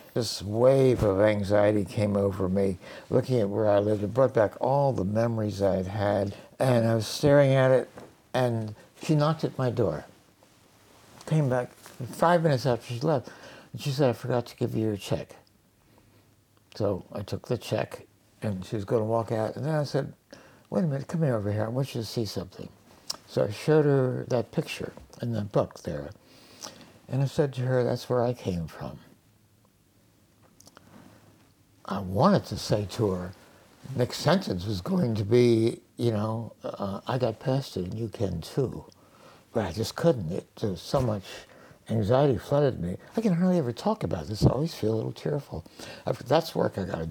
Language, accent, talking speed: English, American, 190 wpm